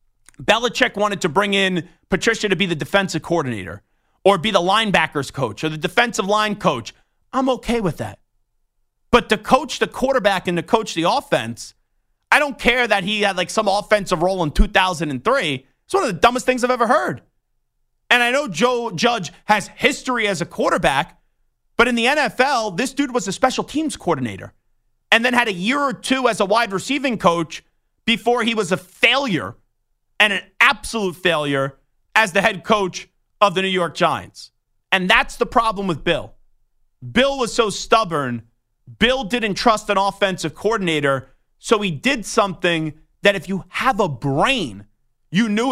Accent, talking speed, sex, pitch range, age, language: American, 175 wpm, male, 145-230 Hz, 30-49, English